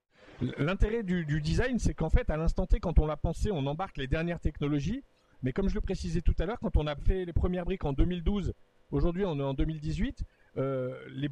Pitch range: 135-175 Hz